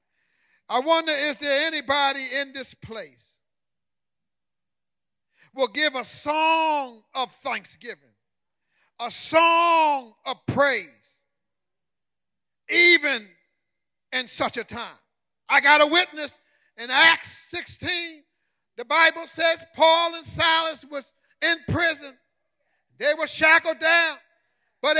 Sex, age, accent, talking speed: male, 50-69, American, 105 wpm